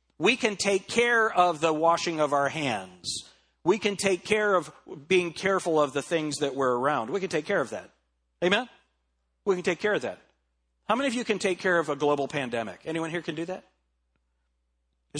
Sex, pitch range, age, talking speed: male, 140-200 Hz, 40-59, 210 wpm